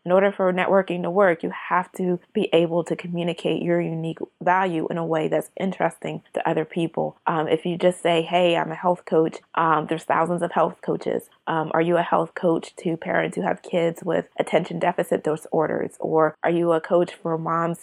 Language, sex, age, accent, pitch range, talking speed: English, female, 20-39, American, 165-185 Hz, 210 wpm